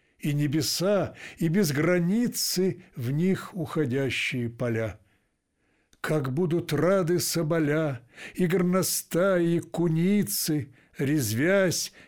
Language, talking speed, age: Russian, 90 wpm, 60-79